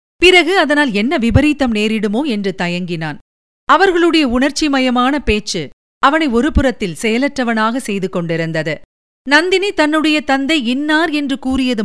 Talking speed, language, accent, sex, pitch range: 105 wpm, Tamil, native, female, 205-290 Hz